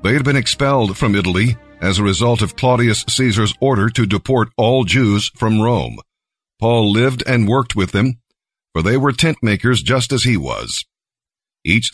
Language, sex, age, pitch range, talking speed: English, male, 50-69, 105-125 Hz, 175 wpm